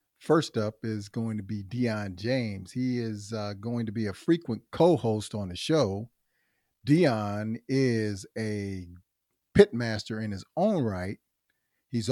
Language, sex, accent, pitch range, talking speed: English, male, American, 105-125 Hz, 155 wpm